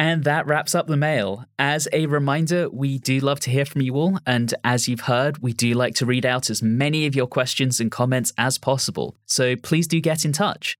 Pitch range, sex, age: 115-150 Hz, male, 10-29